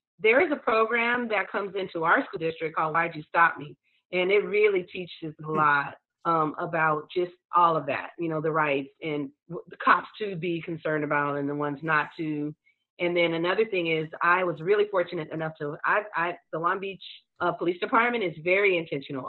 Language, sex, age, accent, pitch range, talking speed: English, female, 30-49, American, 160-200 Hz, 195 wpm